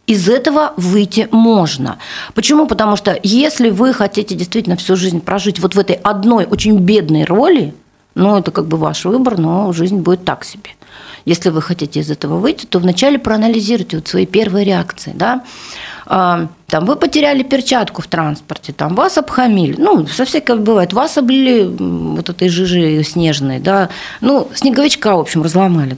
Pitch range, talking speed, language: 175-225 Hz, 165 wpm, Russian